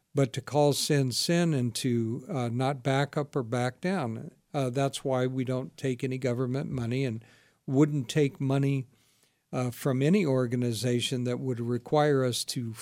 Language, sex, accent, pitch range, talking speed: English, male, American, 125-150 Hz, 170 wpm